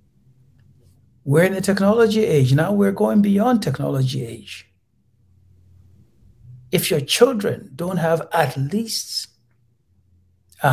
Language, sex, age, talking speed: English, male, 60-79, 105 wpm